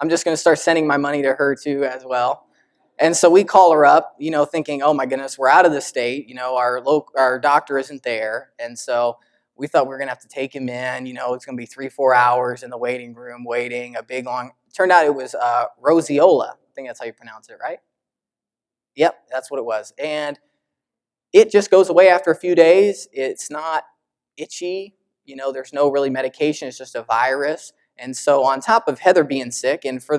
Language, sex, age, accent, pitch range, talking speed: English, male, 20-39, American, 130-165 Hz, 235 wpm